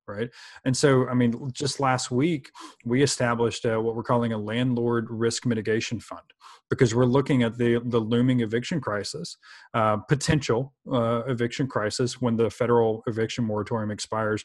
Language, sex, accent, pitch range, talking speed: English, male, American, 115-125 Hz, 160 wpm